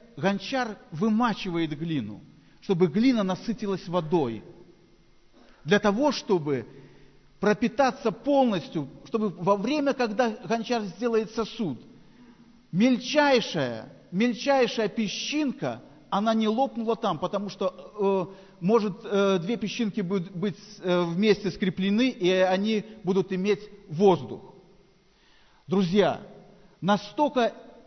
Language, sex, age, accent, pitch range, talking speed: Russian, male, 50-69, native, 180-225 Hz, 90 wpm